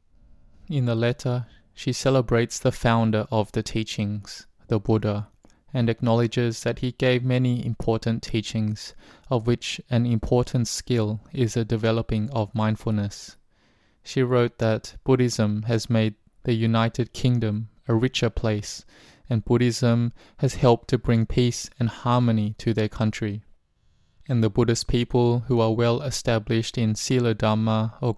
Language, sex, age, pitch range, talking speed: English, male, 20-39, 110-120 Hz, 140 wpm